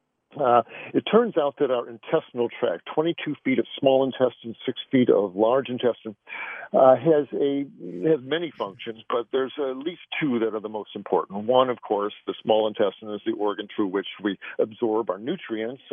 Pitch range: 110-140 Hz